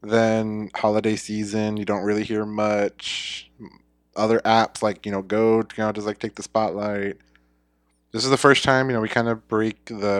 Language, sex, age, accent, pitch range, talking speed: English, male, 20-39, American, 95-120 Hz, 180 wpm